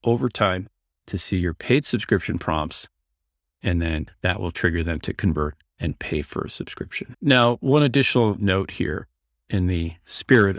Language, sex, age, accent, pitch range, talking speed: English, male, 40-59, American, 80-105 Hz, 165 wpm